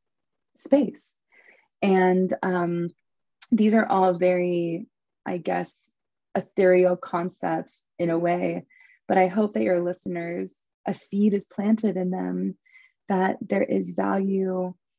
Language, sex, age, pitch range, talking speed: English, female, 20-39, 170-195 Hz, 120 wpm